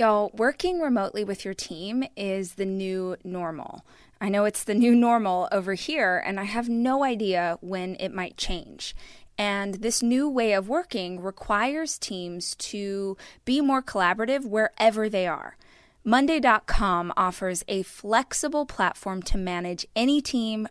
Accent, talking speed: American, 150 wpm